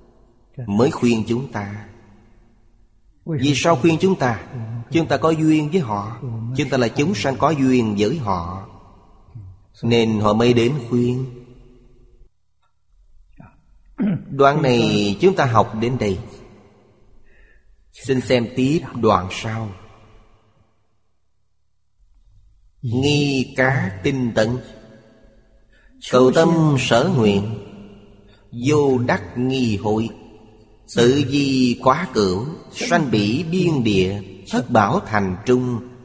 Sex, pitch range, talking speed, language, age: male, 105-130 Hz, 110 wpm, Vietnamese, 30-49